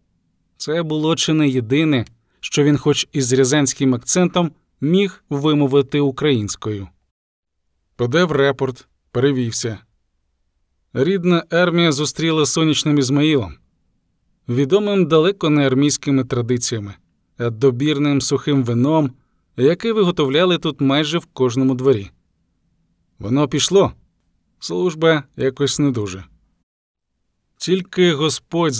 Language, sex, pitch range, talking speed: Ukrainian, male, 130-160 Hz, 100 wpm